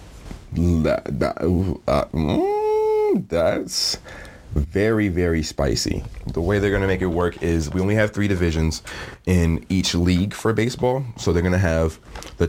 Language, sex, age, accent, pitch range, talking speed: English, male, 30-49, American, 85-105 Hz, 155 wpm